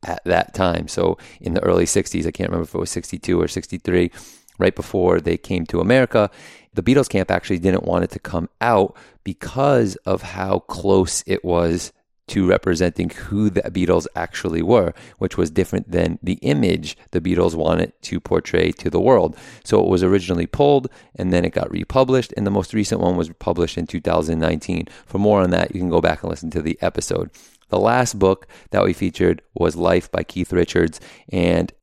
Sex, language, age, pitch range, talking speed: male, English, 30-49, 85-100 Hz, 195 wpm